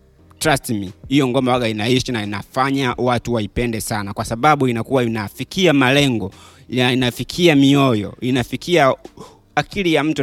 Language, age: Swahili, 30-49